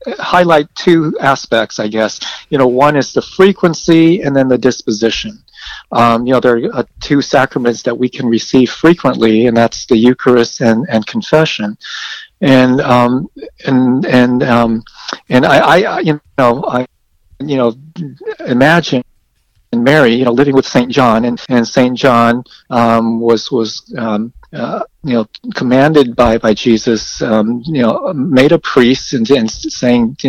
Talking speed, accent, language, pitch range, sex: 160 wpm, American, English, 115-145 Hz, male